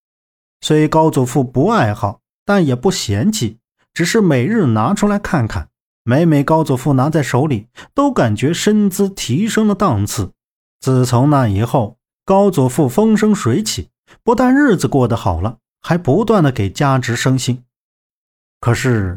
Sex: male